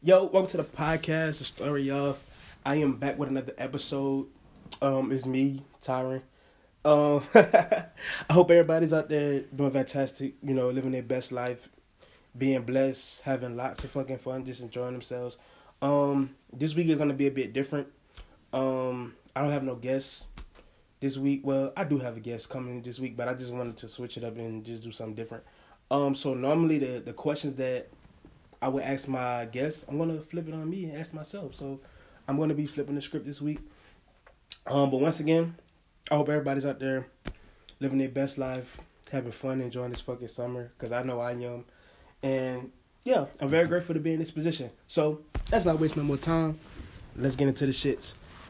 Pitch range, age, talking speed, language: 125-150 Hz, 20-39, 200 wpm, English